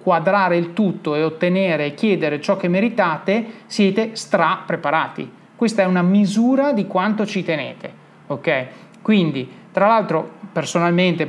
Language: Italian